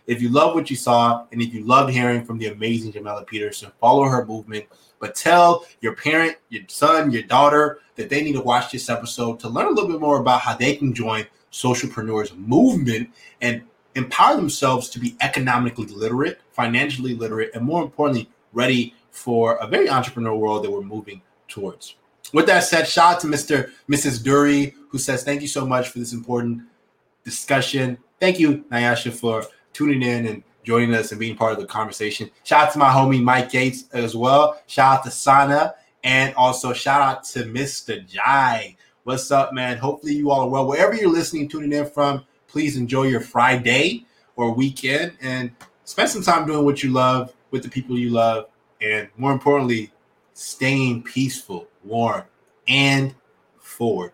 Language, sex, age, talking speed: English, male, 20-39, 180 wpm